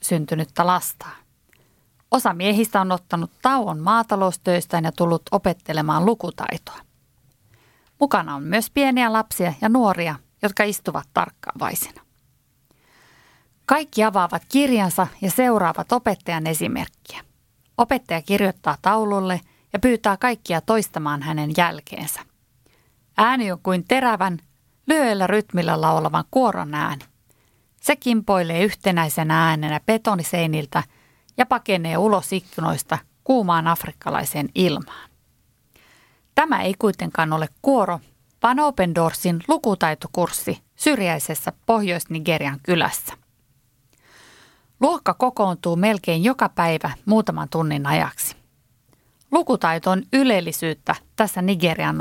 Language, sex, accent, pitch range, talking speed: Finnish, female, native, 165-220 Hz, 95 wpm